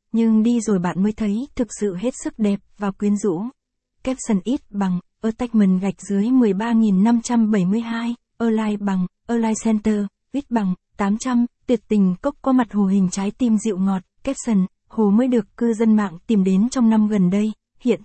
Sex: female